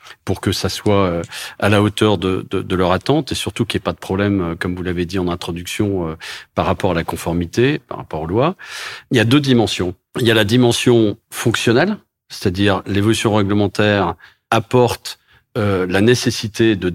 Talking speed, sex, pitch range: 190 wpm, male, 100-125 Hz